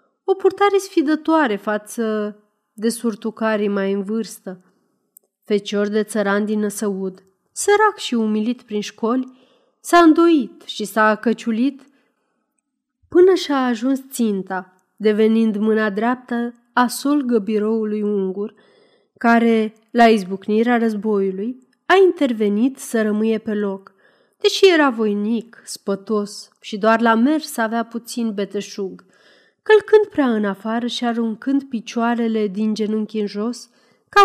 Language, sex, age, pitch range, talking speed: Romanian, female, 30-49, 210-255 Hz, 120 wpm